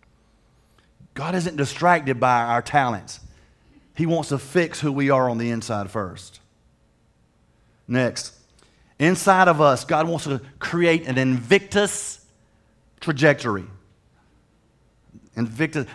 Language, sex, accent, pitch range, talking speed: English, male, American, 130-170 Hz, 110 wpm